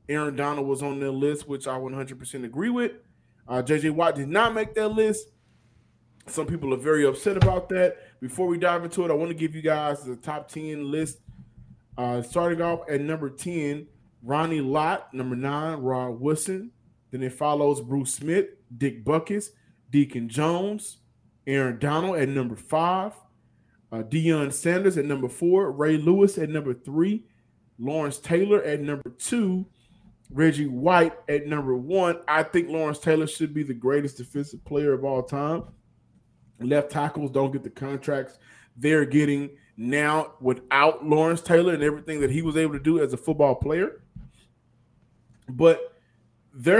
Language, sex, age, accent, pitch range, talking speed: English, male, 20-39, American, 135-175 Hz, 160 wpm